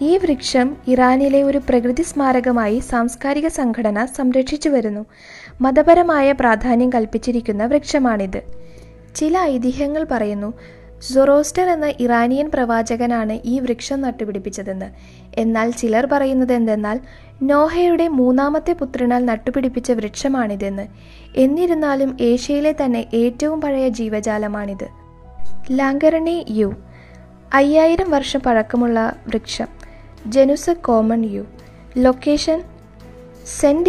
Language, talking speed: Malayalam, 90 wpm